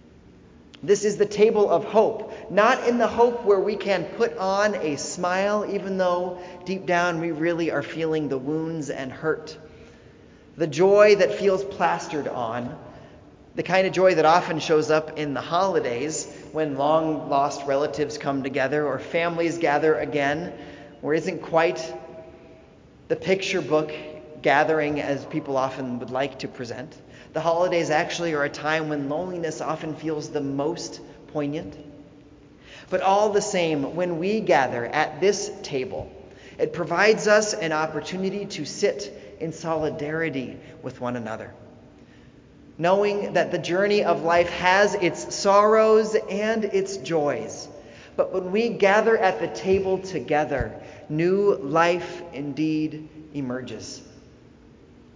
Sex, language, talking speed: male, English, 140 wpm